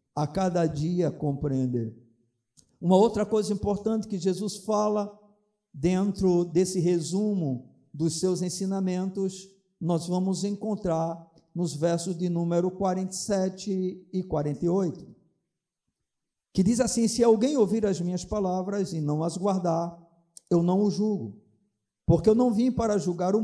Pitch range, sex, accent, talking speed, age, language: 185-235 Hz, male, Brazilian, 130 wpm, 50-69, Portuguese